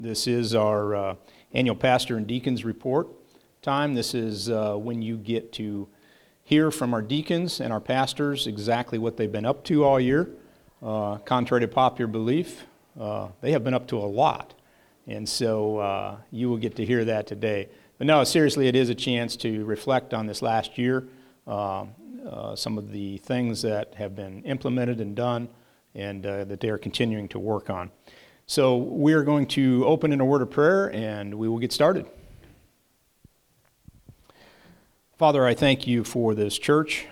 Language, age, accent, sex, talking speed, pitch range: English, 50-69, American, male, 180 wpm, 105-125 Hz